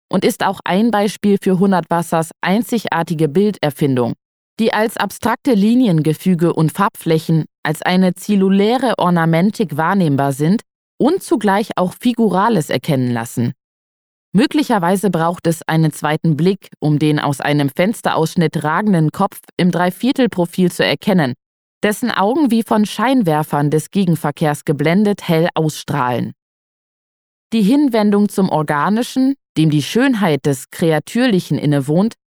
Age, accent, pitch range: 20-39, German, 155-210 Hz